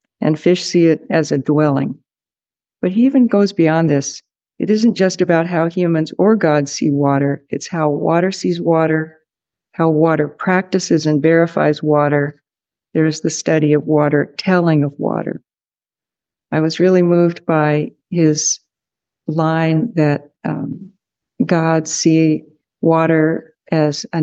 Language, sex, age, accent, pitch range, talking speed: English, female, 60-79, American, 150-180 Hz, 140 wpm